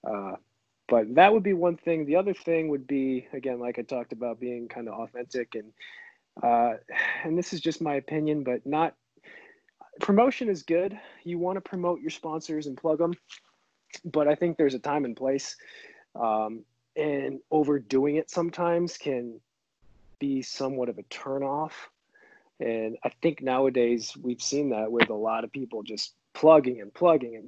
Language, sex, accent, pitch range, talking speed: English, male, American, 120-160 Hz, 170 wpm